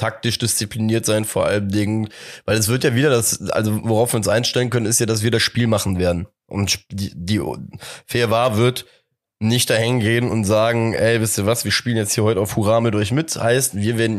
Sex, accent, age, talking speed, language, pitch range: male, German, 20-39, 230 wpm, German, 105-120 Hz